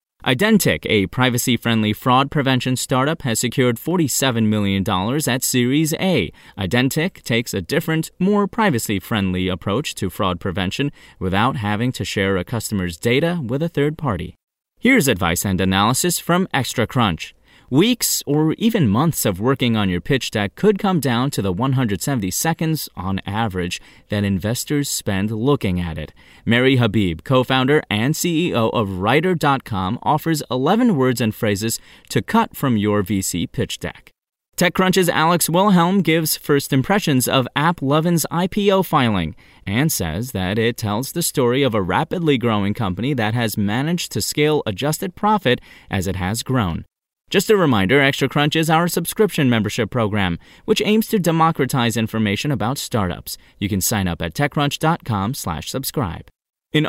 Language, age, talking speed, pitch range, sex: English, 30-49, 150 wpm, 105-155 Hz, male